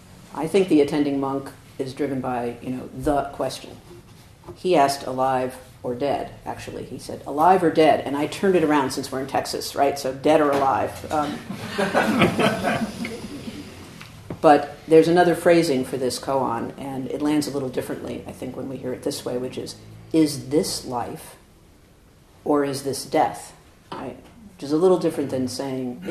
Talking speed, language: 170 wpm, English